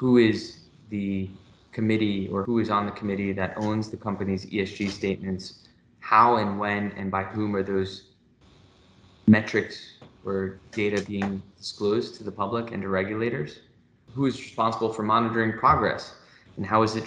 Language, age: English, 20-39